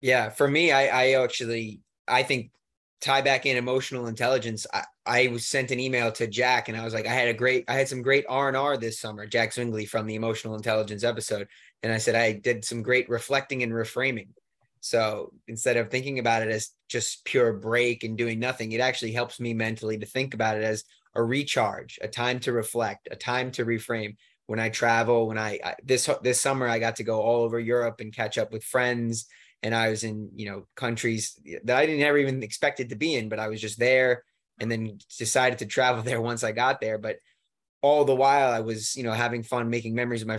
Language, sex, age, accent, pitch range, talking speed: English, male, 20-39, American, 110-125 Hz, 225 wpm